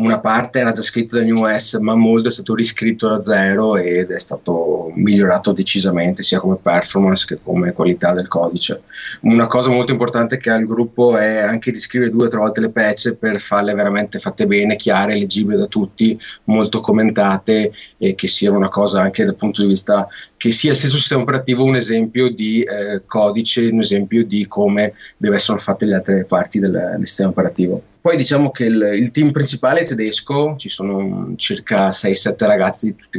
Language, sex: Italian, male